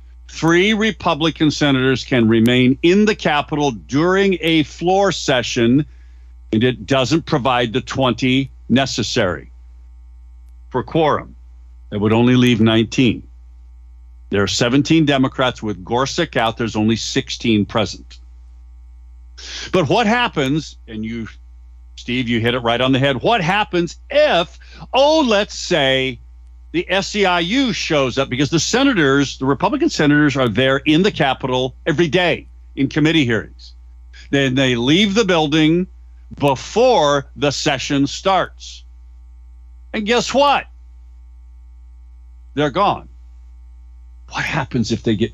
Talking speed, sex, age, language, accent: 125 wpm, male, 50-69, English, American